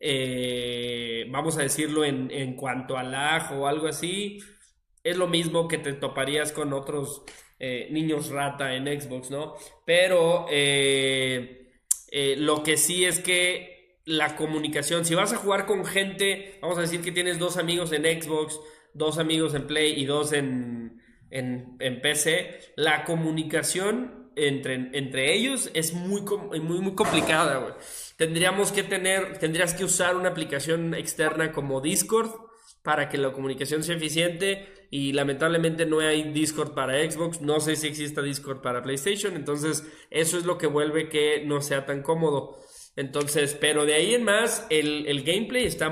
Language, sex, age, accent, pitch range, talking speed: Spanish, male, 20-39, Mexican, 140-175 Hz, 165 wpm